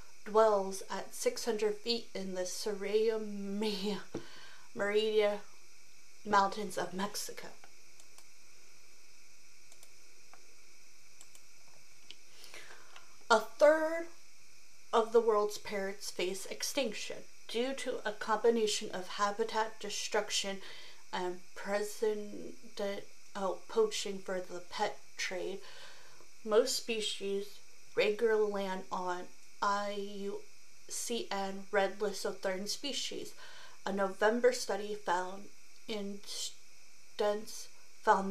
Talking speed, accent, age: 85 wpm, American, 30-49